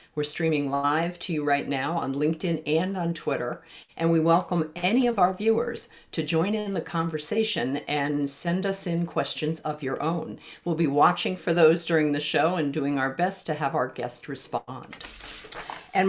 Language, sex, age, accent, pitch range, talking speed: English, female, 50-69, American, 155-190 Hz, 185 wpm